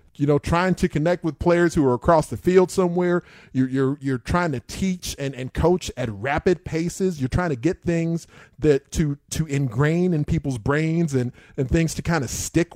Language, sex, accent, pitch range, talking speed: English, male, American, 130-165 Hz, 205 wpm